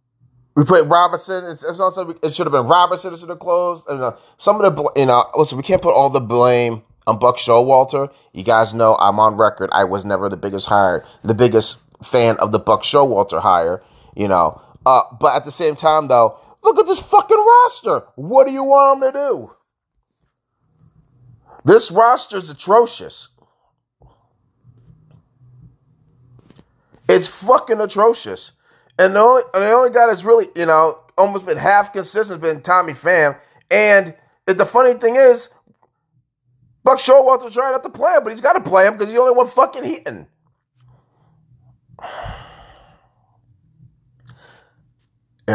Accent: American